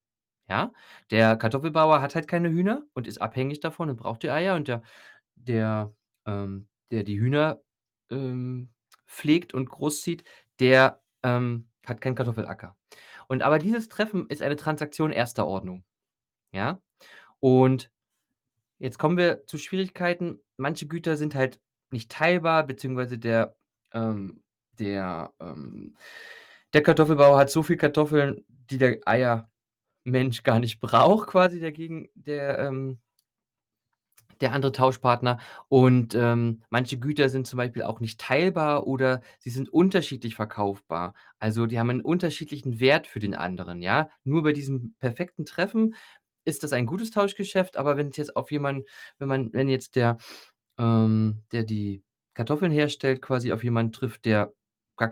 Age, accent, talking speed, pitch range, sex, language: 20-39, German, 145 wpm, 115-150 Hz, male, German